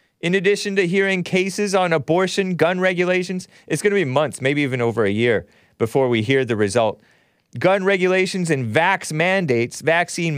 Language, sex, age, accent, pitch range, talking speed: English, male, 30-49, American, 115-180 Hz, 175 wpm